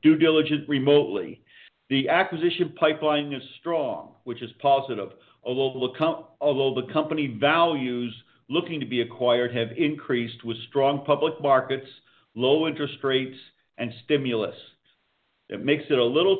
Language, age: English, 50-69